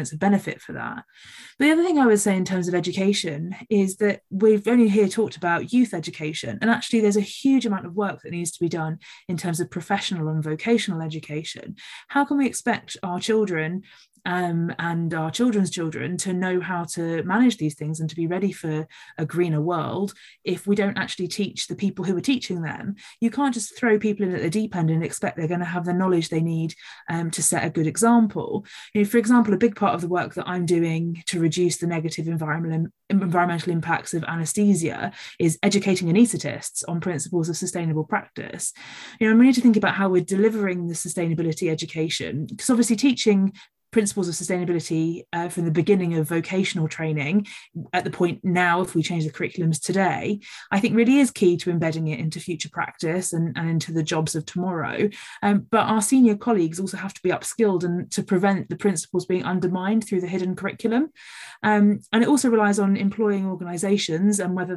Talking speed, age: 205 wpm, 20-39